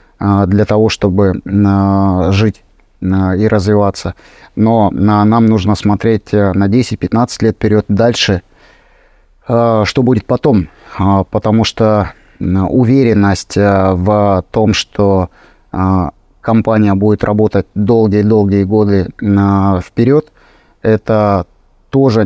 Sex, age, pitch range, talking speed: male, 30-49, 95-110 Hz, 85 wpm